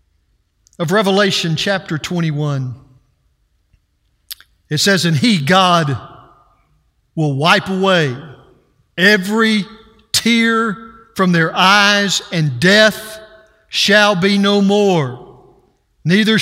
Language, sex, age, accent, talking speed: English, male, 50-69, American, 90 wpm